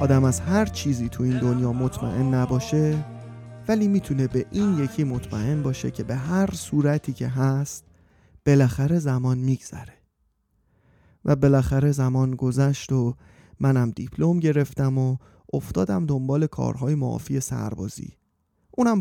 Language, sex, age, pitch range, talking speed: Persian, male, 30-49, 130-155 Hz, 125 wpm